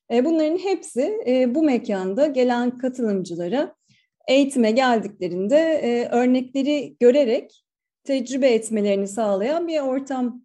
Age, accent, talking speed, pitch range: 40-59, native, 85 wpm, 220-280 Hz